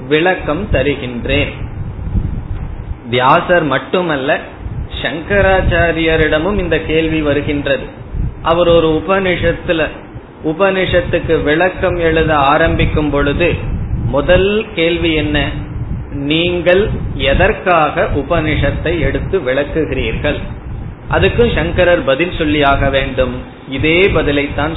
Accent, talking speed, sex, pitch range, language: native, 70 wpm, male, 140-175 Hz, Tamil